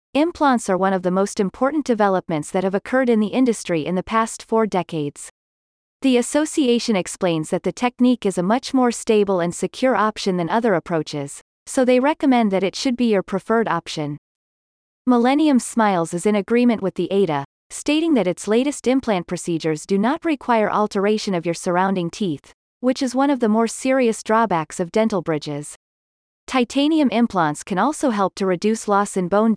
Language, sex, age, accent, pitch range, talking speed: English, female, 30-49, American, 180-240 Hz, 180 wpm